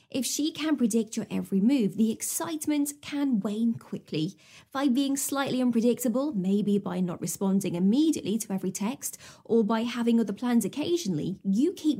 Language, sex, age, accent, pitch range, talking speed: English, female, 20-39, British, 200-275 Hz, 160 wpm